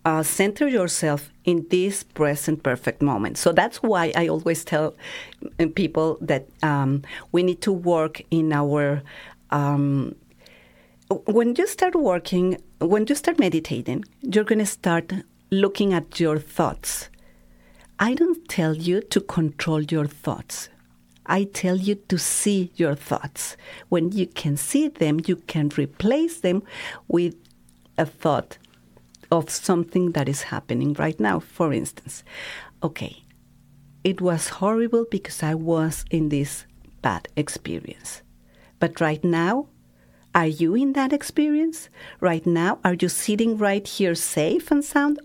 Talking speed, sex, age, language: 140 wpm, female, 40-59, English